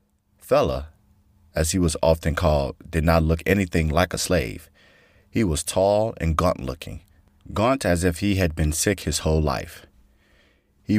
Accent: American